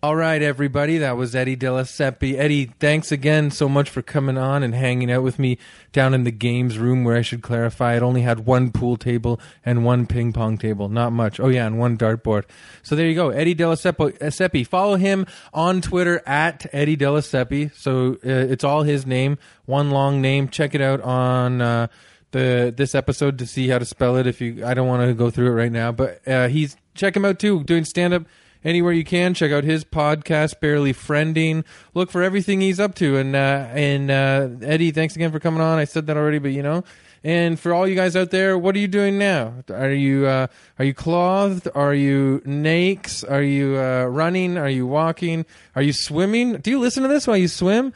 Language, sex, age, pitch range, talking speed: English, male, 20-39, 125-165 Hz, 220 wpm